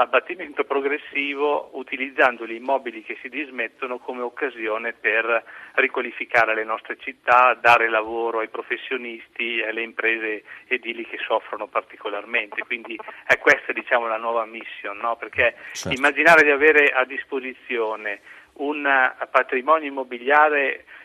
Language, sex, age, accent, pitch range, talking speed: Italian, male, 40-59, native, 115-135 Hz, 120 wpm